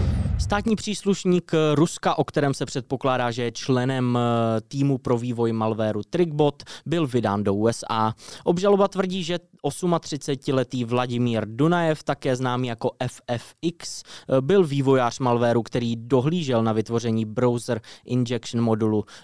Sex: male